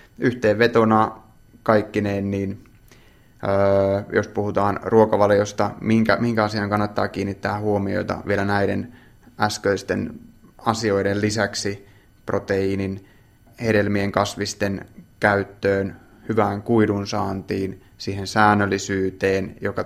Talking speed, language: 85 wpm, Finnish